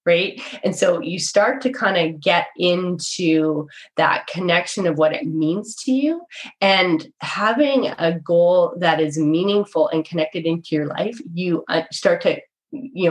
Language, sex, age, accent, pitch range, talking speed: English, female, 20-39, American, 160-205 Hz, 155 wpm